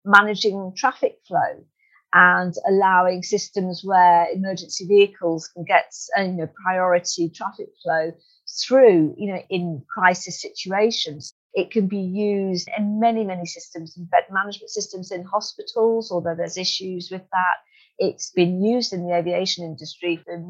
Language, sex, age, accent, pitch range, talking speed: English, female, 50-69, British, 170-205 Hz, 145 wpm